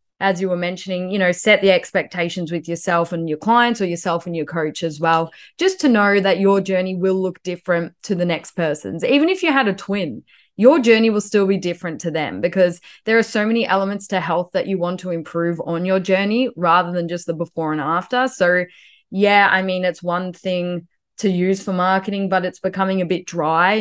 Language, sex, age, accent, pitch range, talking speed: English, female, 20-39, Australian, 175-200 Hz, 220 wpm